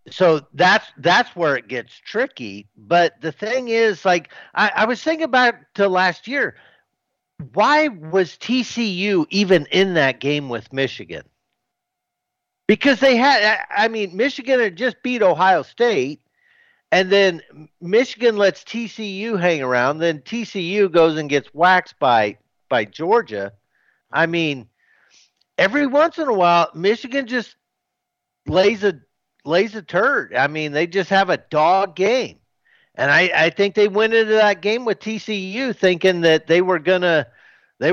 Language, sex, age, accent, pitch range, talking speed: English, male, 50-69, American, 155-225 Hz, 155 wpm